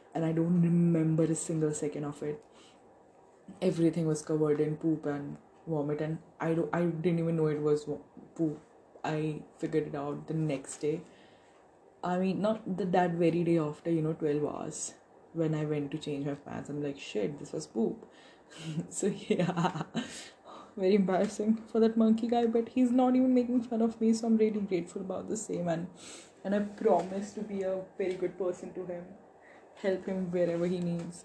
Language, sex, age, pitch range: English, female, 20-39, 160-220 Hz